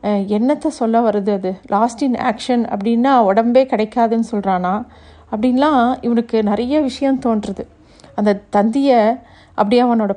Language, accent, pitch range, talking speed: Tamil, native, 215-250 Hz, 110 wpm